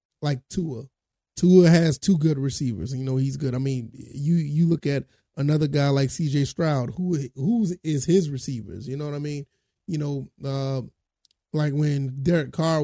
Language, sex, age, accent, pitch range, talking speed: English, male, 30-49, American, 135-175 Hz, 185 wpm